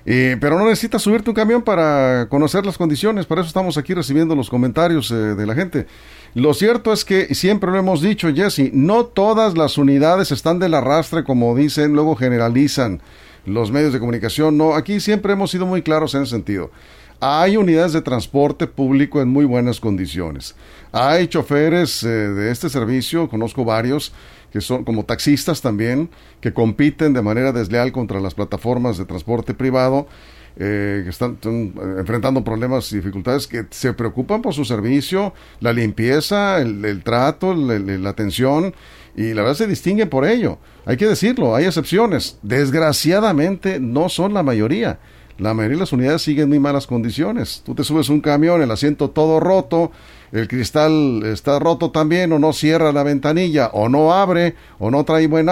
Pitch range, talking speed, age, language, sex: 120-170 Hz, 175 wpm, 50-69, Spanish, male